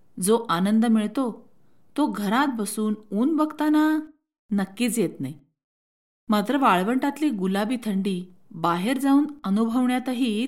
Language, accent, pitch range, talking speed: Marathi, native, 190-245 Hz, 105 wpm